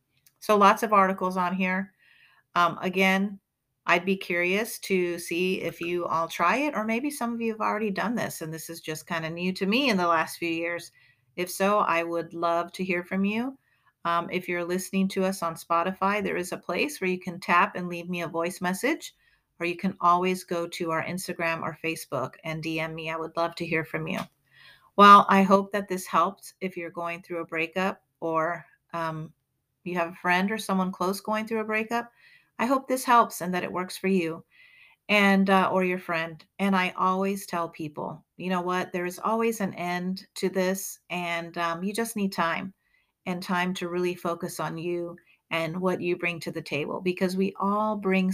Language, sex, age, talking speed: English, female, 40-59, 210 wpm